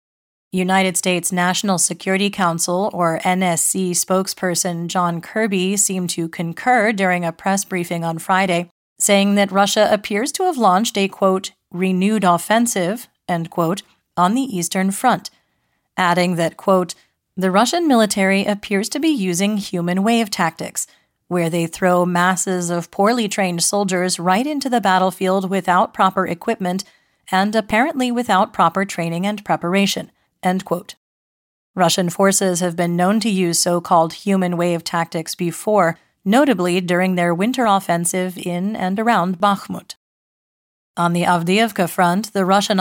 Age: 30-49